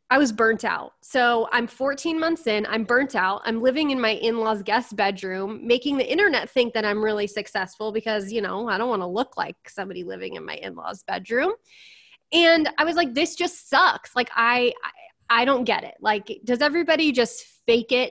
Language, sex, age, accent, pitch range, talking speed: English, female, 20-39, American, 210-270 Hz, 200 wpm